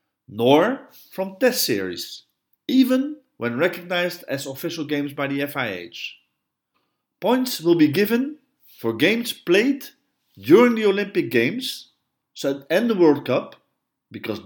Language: English